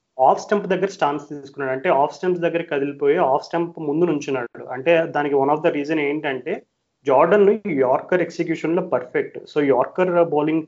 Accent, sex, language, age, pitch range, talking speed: native, male, Telugu, 30-49, 135-170 Hz, 165 wpm